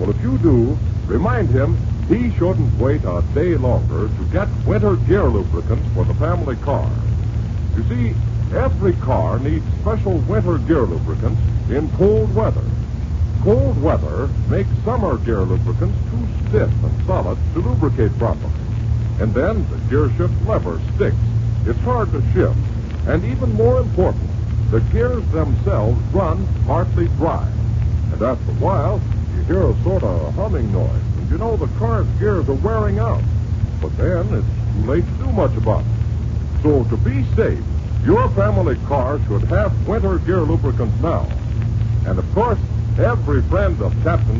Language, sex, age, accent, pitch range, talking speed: English, female, 60-79, American, 105-110 Hz, 160 wpm